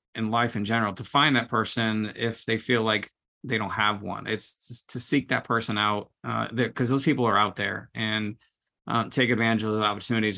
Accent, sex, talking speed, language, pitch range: American, male, 215 wpm, English, 105-120 Hz